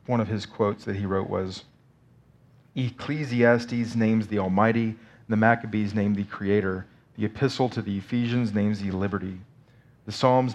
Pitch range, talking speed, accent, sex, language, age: 105-125 Hz, 155 wpm, American, male, English, 40-59